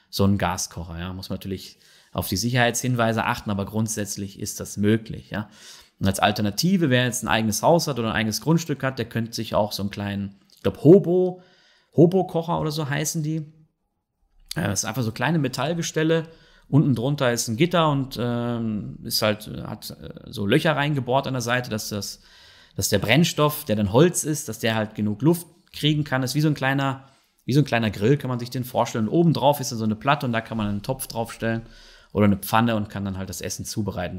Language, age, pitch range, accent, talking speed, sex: German, 30-49, 100-145 Hz, German, 220 wpm, male